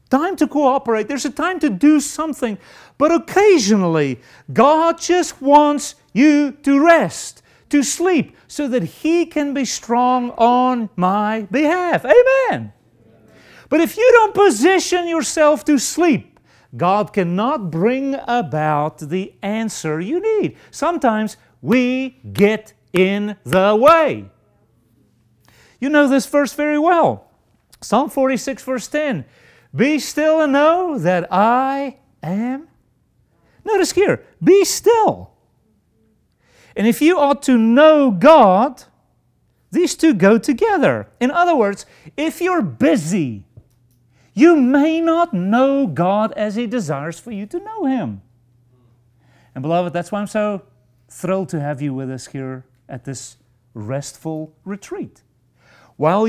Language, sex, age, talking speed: English, male, 40-59, 130 wpm